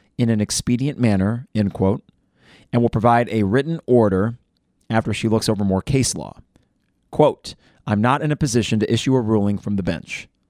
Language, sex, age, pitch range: English, male, 30-49, 100-120 Hz